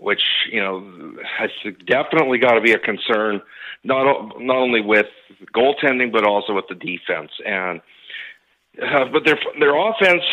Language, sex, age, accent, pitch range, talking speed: English, male, 50-69, American, 110-150 Hz, 150 wpm